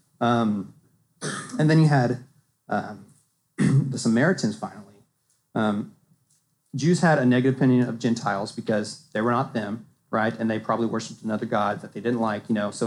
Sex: male